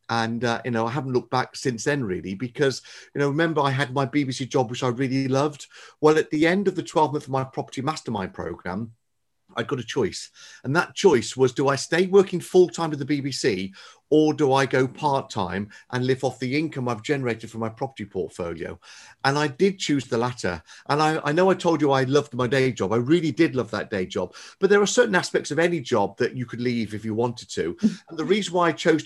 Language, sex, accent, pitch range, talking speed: English, male, British, 125-155 Hz, 240 wpm